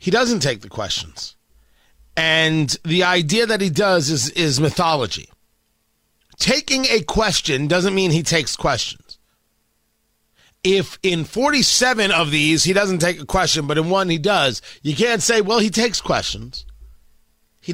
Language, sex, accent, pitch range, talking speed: English, male, American, 150-215 Hz, 150 wpm